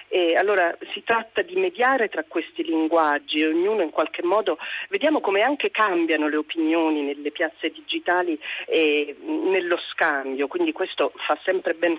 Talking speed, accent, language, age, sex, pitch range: 155 wpm, native, Italian, 40-59, female, 160-245 Hz